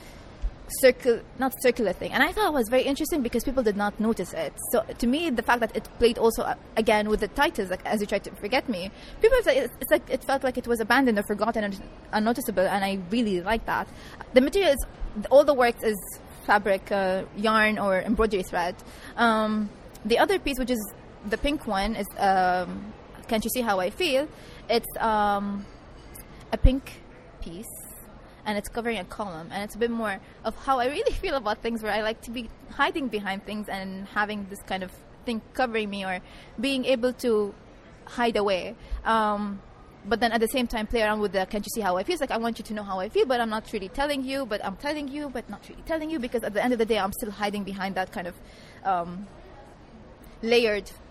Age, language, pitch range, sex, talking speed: 20-39, English, 200-250 Hz, female, 220 wpm